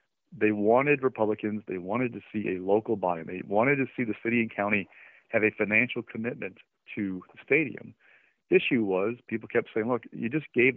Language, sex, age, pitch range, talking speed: English, male, 40-59, 100-120 Hz, 195 wpm